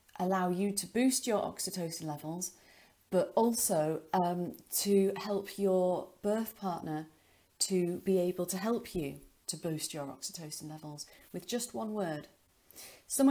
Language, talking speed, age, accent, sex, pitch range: English, 140 wpm, 40-59, British, female, 160-210 Hz